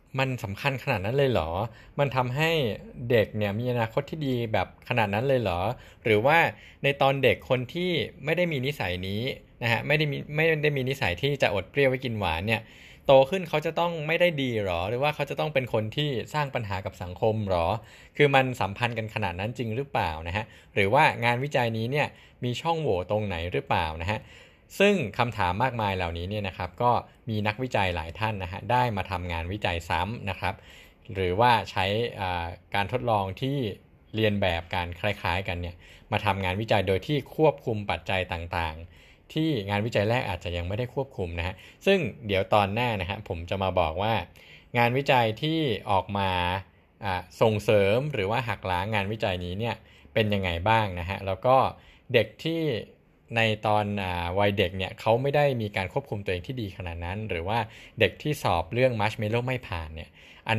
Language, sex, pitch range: Thai, male, 95-130 Hz